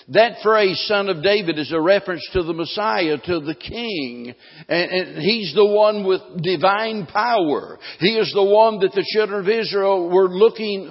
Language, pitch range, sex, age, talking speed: English, 175-220 Hz, male, 60-79, 175 wpm